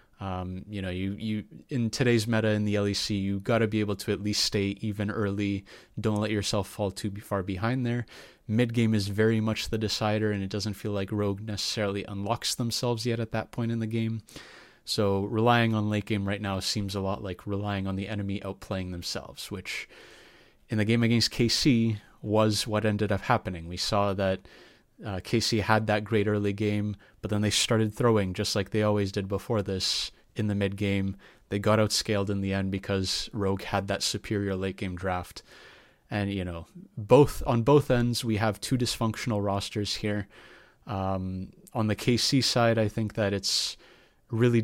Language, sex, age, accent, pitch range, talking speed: English, male, 30-49, American, 100-110 Hz, 190 wpm